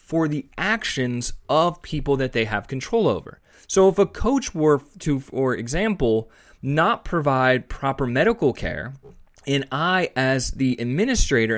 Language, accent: English, American